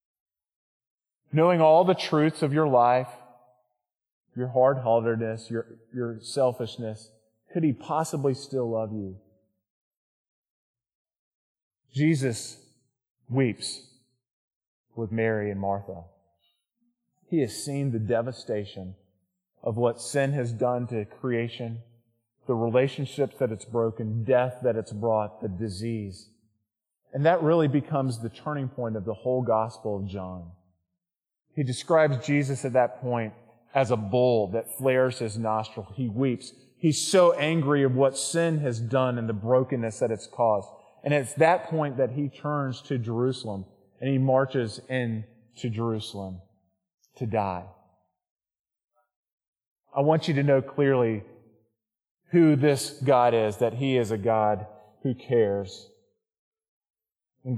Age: 30-49